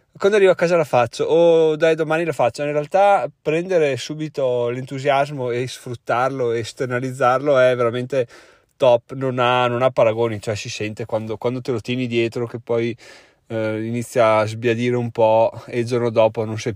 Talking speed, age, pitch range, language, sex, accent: 180 wpm, 30-49, 120-160 Hz, Italian, male, native